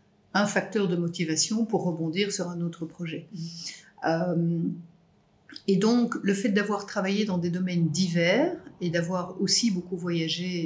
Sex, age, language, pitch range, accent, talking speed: female, 50-69, French, 165-210 Hz, French, 145 wpm